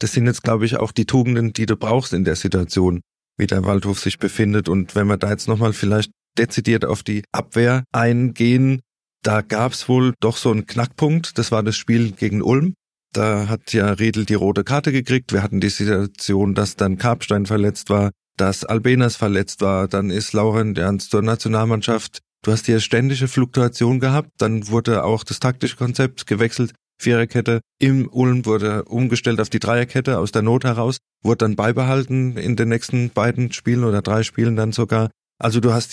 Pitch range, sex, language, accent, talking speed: 105-125 Hz, male, German, German, 190 wpm